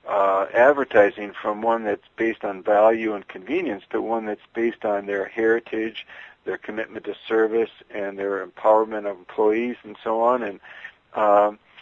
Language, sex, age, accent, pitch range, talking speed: English, male, 60-79, American, 105-120 Hz, 155 wpm